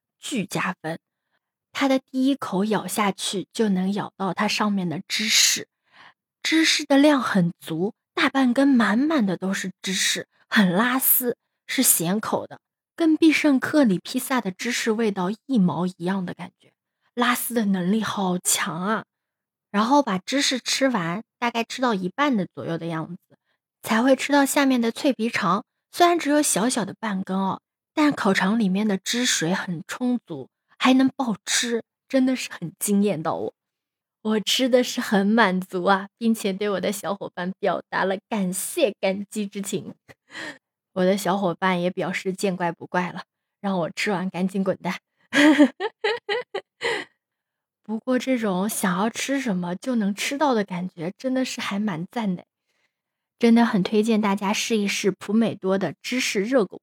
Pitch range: 190-255 Hz